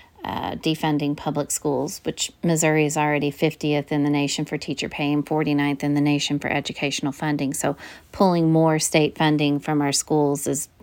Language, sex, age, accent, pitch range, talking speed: English, female, 40-59, American, 145-170 Hz, 175 wpm